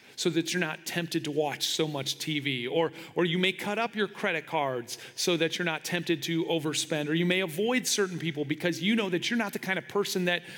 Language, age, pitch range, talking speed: English, 40-59, 145-180 Hz, 245 wpm